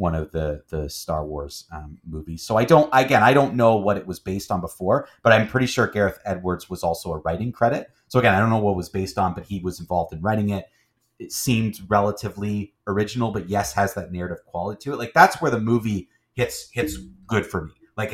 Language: English